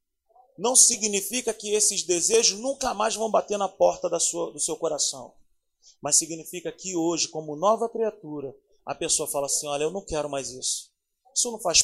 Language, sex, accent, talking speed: Portuguese, male, Brazilian, 180 wpm